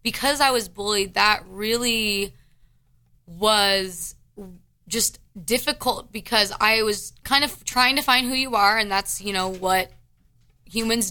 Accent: American